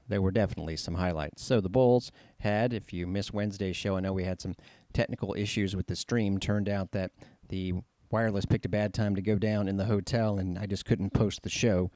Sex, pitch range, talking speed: male, 95-115 Hz, 230 wpm